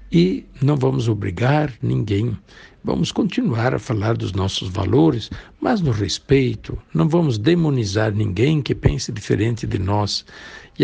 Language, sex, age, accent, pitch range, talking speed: Portuguese, male, 60-79, Brazilian, 105-150 Hz, 140 wpm